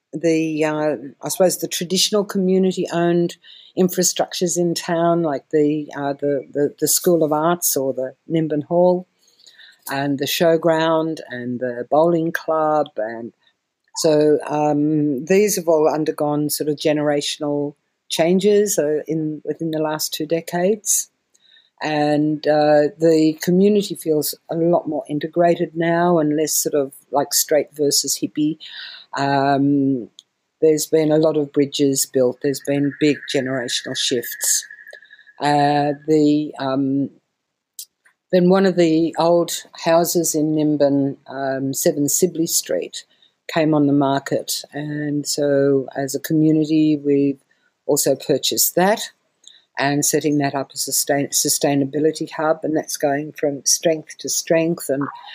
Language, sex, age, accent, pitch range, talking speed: English, female, 50-69, Australian, 145-165 Hz, 130 wpm